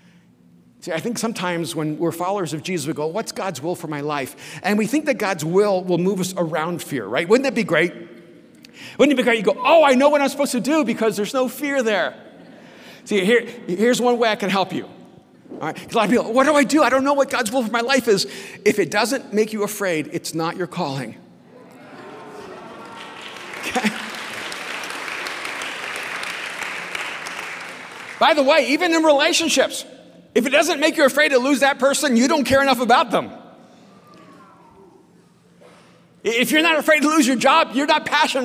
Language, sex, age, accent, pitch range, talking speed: English, male, 50-69, American, 180-265 Hz, 195 wpm